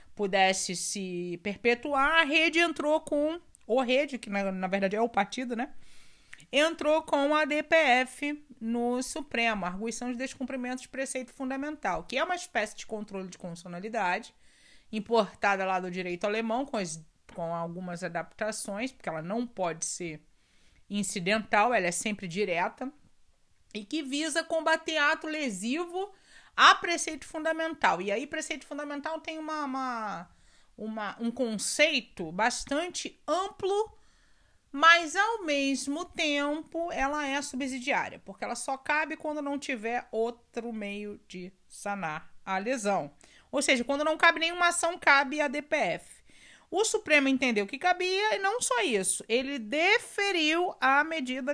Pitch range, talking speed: 210-315 Hz, 140 wpm